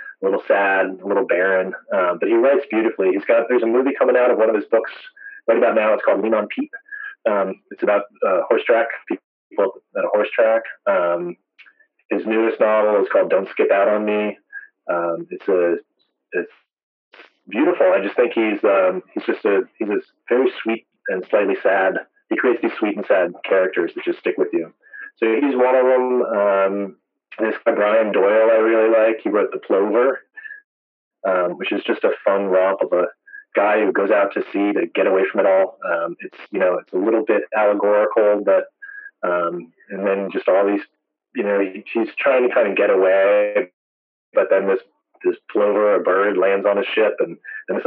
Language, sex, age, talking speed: English, male, 30-49, 205 wpm